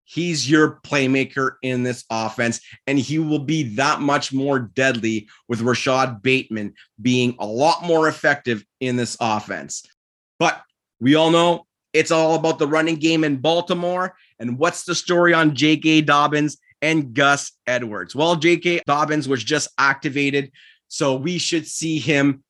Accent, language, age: American, English, 30-49